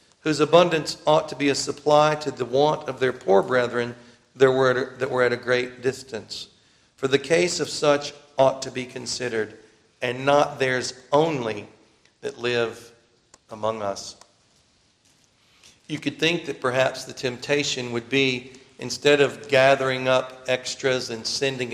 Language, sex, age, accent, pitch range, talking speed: English, male, 50-69, American, 120-140 Hz, 145 wpm